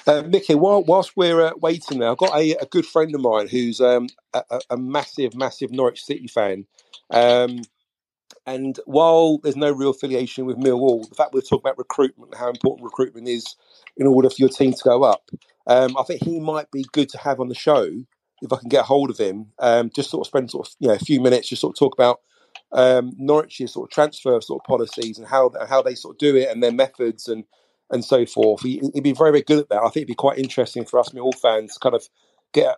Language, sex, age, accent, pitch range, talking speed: English, male, 40-59, British, 120-145 Hz, 240 wpm